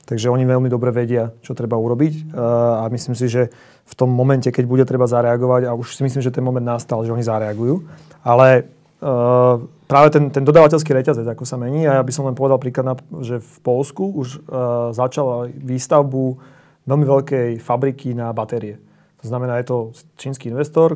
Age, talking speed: 30-49, 180 wpm